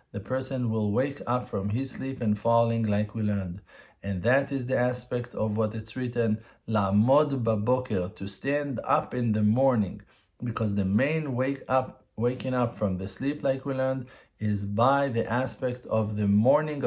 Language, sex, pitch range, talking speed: English, male, 105-135 Hz, 185 wpm